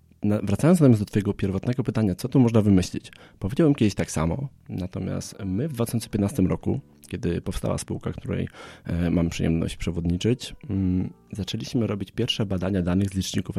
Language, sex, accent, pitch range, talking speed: Polish, male, native, 85-105 Hz, 155 wpm